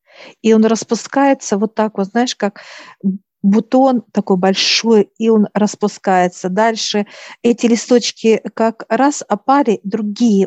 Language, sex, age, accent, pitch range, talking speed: Russian, female, 50-69, native, 195-235 Hz, 120 wpm